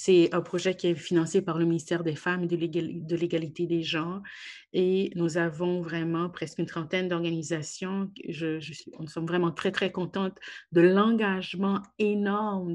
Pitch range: 170-190 Hz